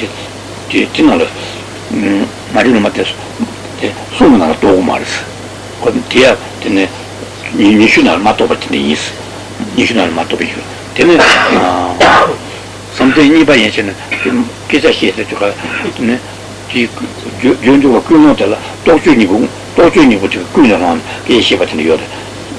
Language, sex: Italian, male